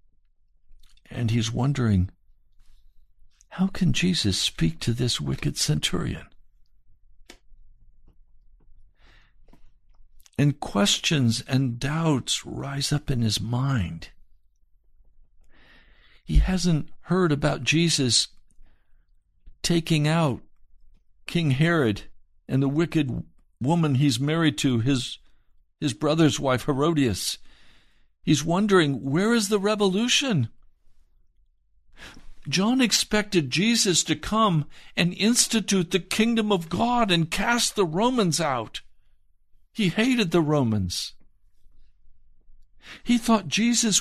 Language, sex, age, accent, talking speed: English, male, 60-79, American, 95 wpm